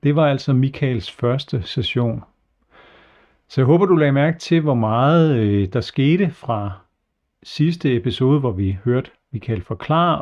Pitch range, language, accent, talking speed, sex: 115-150 Hz, Danish, native, 145 wpm, male